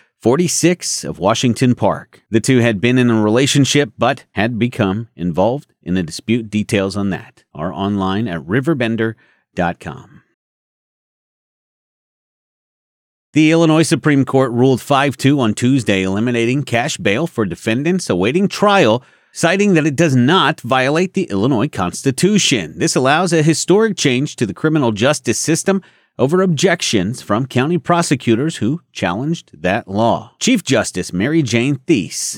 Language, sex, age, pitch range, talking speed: English, male, 40-59, 115-165 Hz, 135 wpm